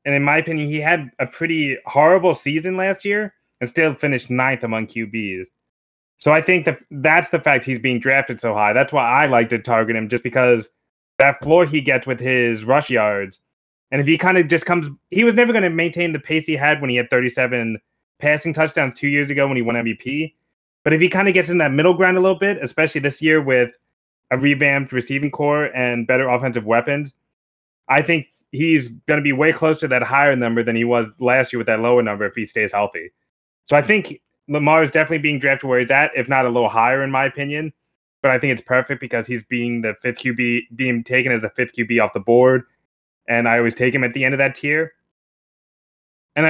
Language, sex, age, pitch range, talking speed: English, male, 20-39, 125-155 Hz, 230 wpm